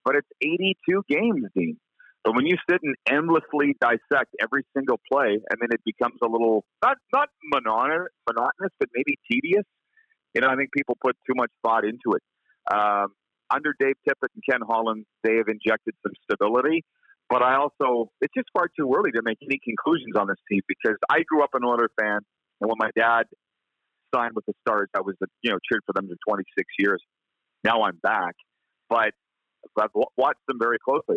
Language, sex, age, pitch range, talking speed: English, male, 40-59, 110-150 Hz, 200 wpm